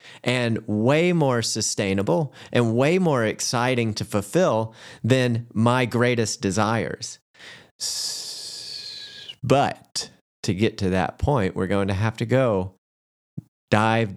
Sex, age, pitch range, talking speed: male, 30-49, 100-120 Hz, 115 wpm